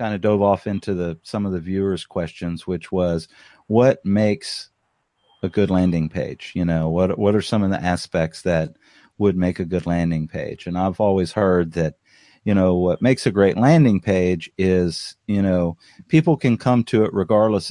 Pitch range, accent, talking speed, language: 90-110 Hz, American, 195 wpm, English